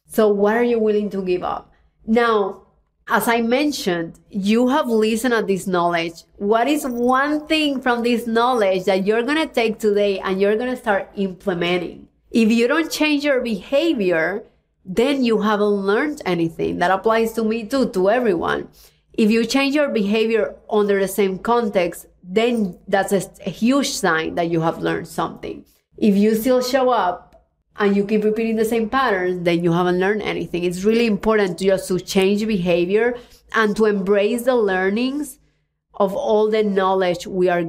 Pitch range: 190-230 Hz